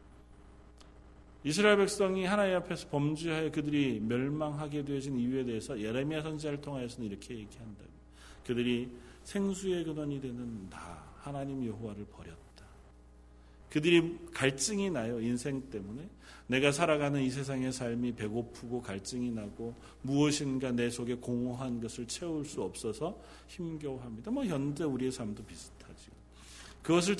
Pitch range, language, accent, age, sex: 110-150 Hz, Korean, native, 40-59, male